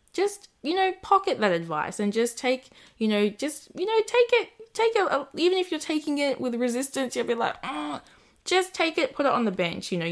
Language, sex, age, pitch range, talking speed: English, female, 10-29, 170-220 Hz, 225 wpm